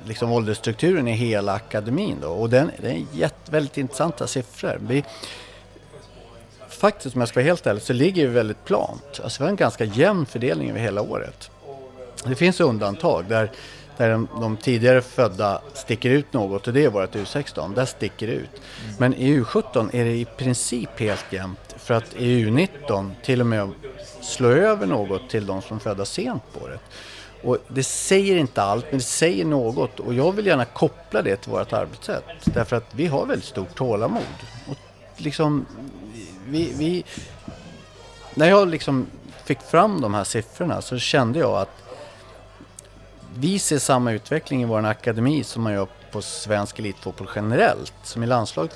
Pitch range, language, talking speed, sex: 105-135 Hz, Swedish, 170 wpm, male